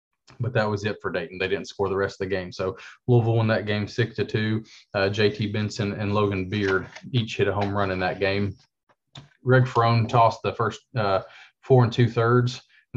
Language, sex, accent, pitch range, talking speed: English, male, American, 100-115 Hz, 215 wpm